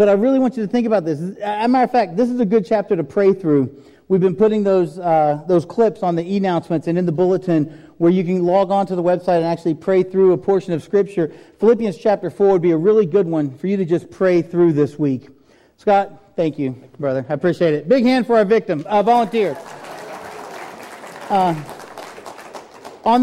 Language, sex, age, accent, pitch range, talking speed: English, male, 40-59, American, 150-195 Hz, 220 wpm